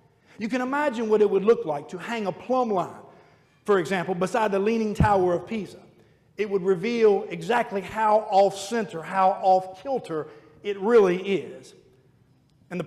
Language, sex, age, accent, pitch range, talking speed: English, male, 50-69, American, 180-220 Hz, 160 wpm